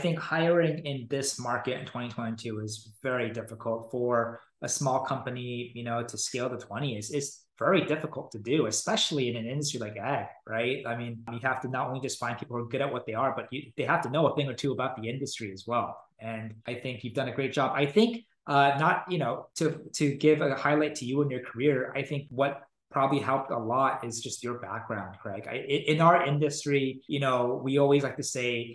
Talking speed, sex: 230 wpm, male